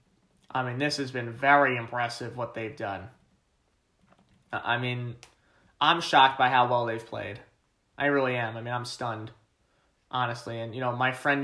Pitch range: 120-145 Hz